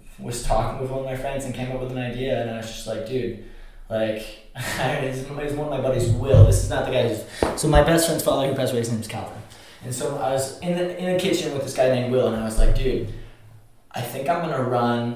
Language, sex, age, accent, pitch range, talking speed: English, male, 20-39, American, 115-130 Hz, 270 wpm